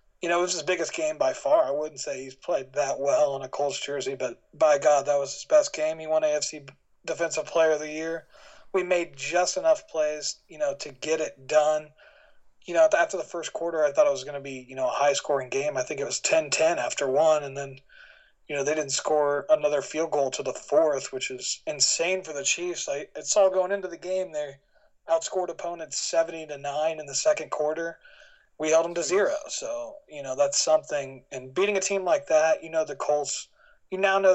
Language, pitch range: English, 145-200 Hz